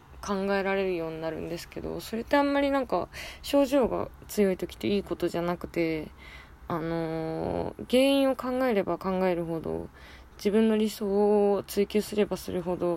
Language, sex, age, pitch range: Japanese, female, 20-39, 165-215 Hz